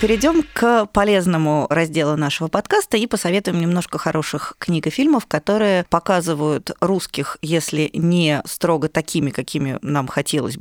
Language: Russian